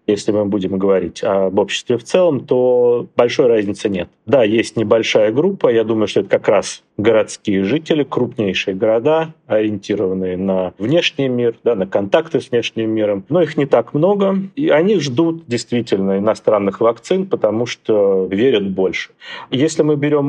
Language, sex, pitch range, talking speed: Russian, male, 105-165 Hz, 160 wpm